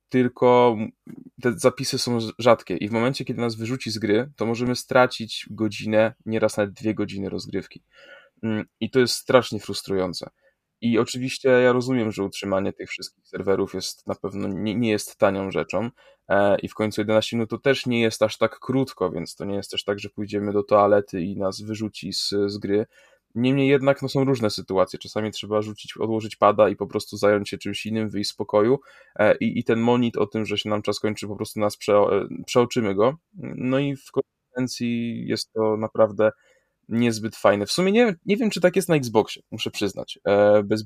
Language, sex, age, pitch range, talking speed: Polish, male, 10-29, 105-125 Hz, 190 wpm